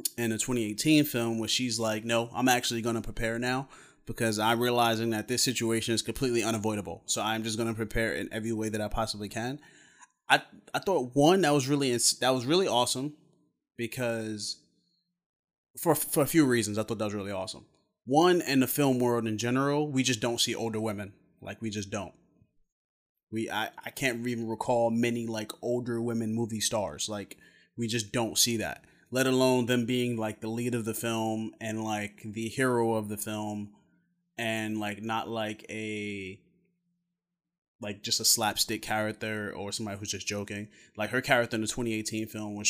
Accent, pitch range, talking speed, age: American, 110-125 Hz, 190 wpm, 20-39